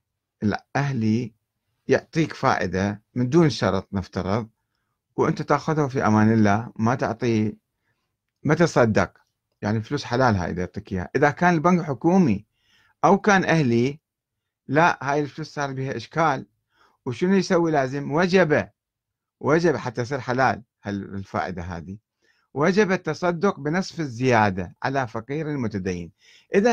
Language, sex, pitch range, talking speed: Arabic, male, 110-155 Hz, 120 wpm